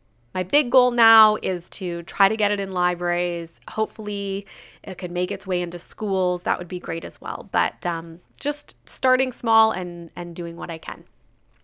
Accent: American